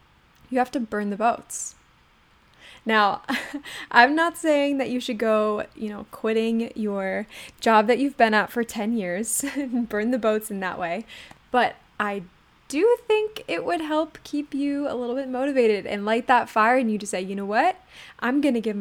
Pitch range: 210-260 Hz